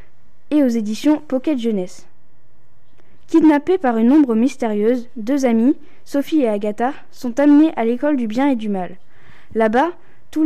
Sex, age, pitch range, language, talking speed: female, 10-29, 220-275 Hz, French, 150 wpm